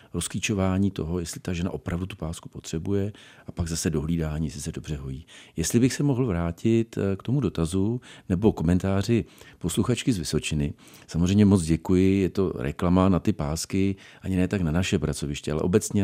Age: 40-59